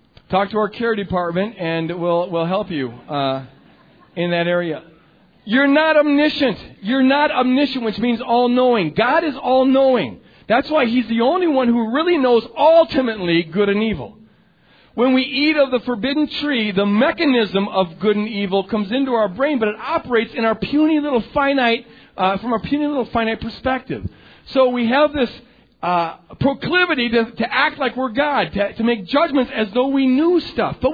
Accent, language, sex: American, English, male